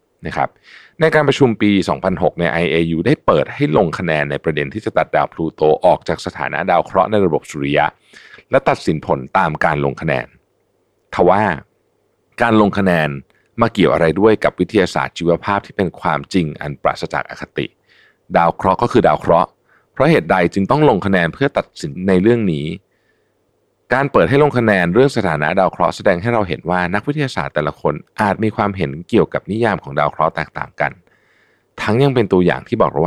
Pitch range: 80-110 Hz